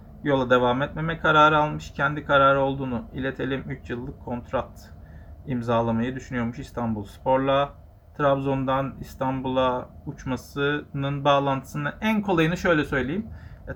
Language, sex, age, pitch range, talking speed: Turkish, male, 40-59, 115-140 Hz, 105 wpm